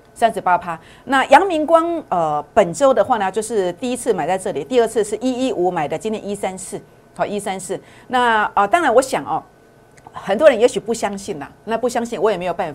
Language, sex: Chinese, female